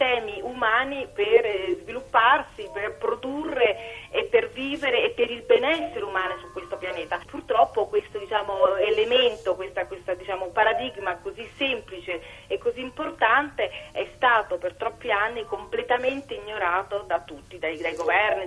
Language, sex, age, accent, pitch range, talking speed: Italian, female, 30-49, native, 210-305 Hz, 135 wpm